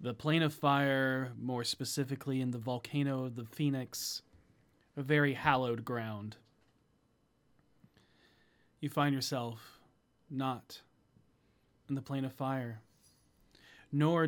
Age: 30-49